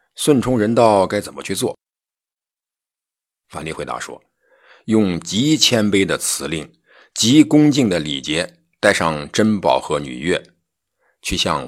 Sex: male